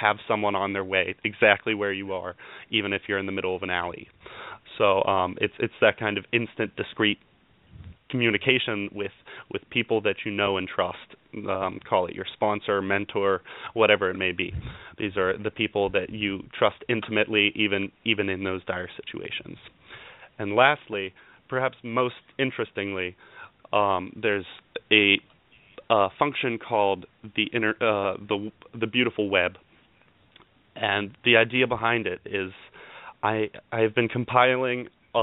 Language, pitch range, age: English, 100-120 Hz, 30-49